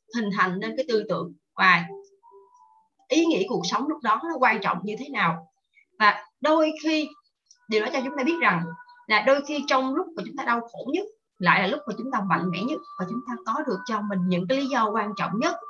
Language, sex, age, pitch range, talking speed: Vietnamese, female, 20-39, 200-305 Hz, 240 wpm